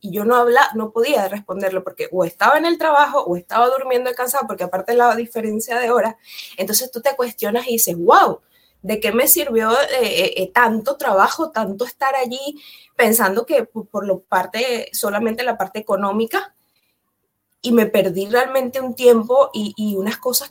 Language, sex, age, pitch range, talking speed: Spanish, female, 20-39, 195-245 Hz, 180 wpm